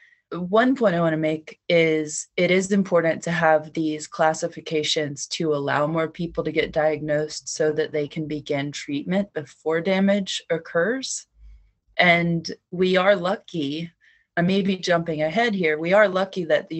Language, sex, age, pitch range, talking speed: English, female, 20-39, 155-185 Hz, 160 wpm